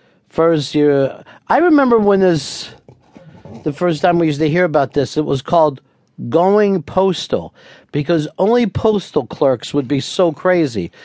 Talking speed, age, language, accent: 150 wpm, 50-69, English, American